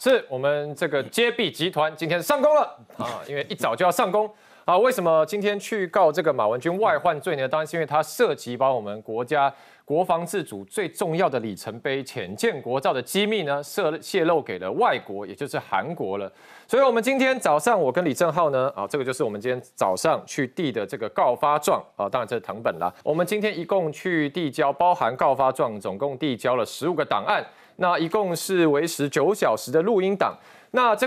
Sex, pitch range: male, 140-210 Hz